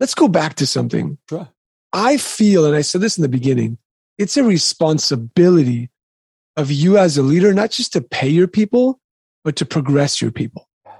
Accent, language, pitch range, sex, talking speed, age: American, English, 145-200 Hz, male, 180 wpm, 30-49